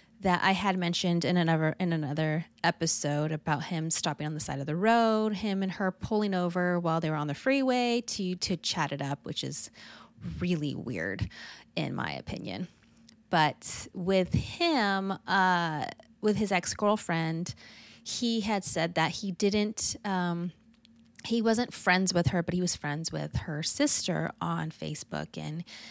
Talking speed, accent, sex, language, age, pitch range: 165 wpm, American, female, English, 30-49, 160-210 Hz